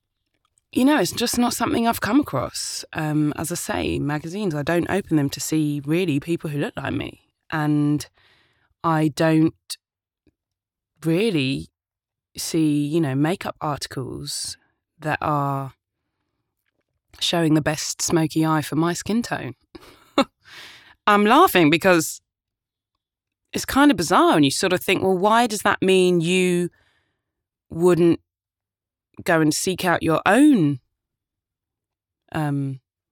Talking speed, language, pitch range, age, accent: 130 wpm, English, 120-190 Hz, 20-39, British